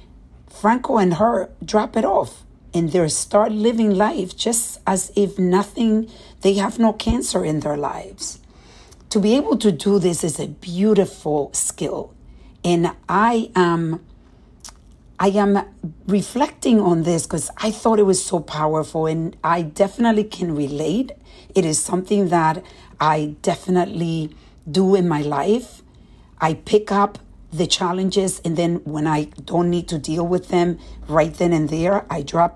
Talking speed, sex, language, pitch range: 150 wpm, female, English, 155-200 Hz